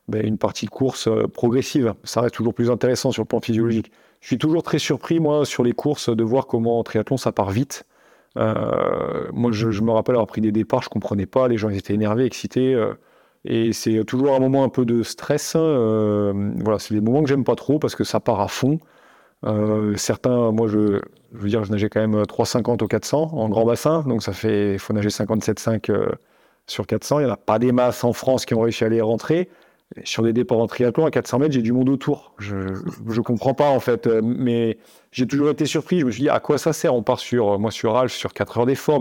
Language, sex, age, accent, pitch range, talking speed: French, male, 40-59, French, 110-135 Hz, 240 wpm